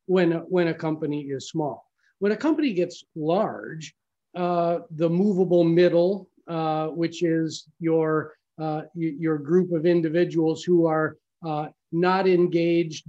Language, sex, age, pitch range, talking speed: English, male, 40-59, 160-190 Hz, 135 wpm